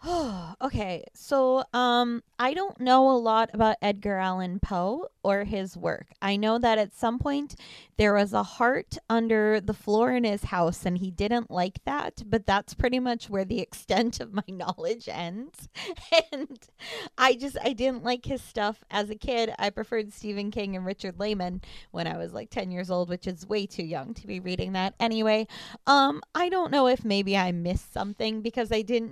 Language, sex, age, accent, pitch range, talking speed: English, female, 20-39, American, 200-260 Hz, 195 wpm